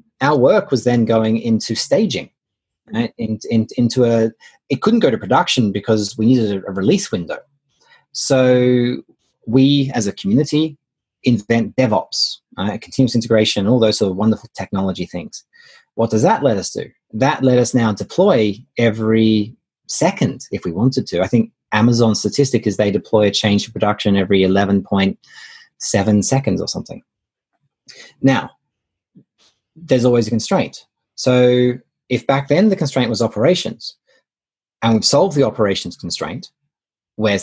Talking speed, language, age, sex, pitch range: 150 wpm, English, 30-49, male, 105-130 Hz